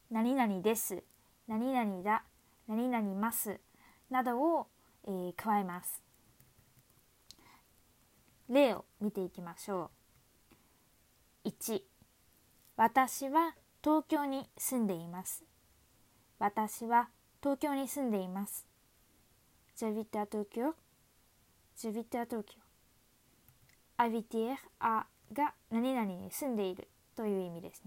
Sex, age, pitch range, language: female, 20-39, 200-255 Hz, Japanese